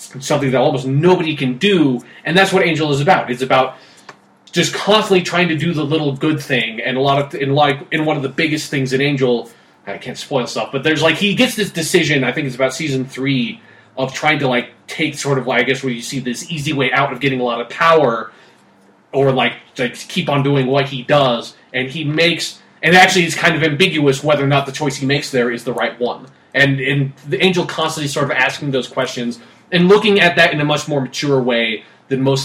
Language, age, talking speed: English, 20-39, 240 wpm